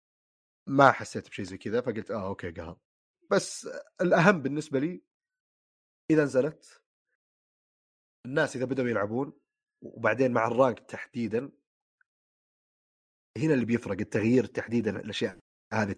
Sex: male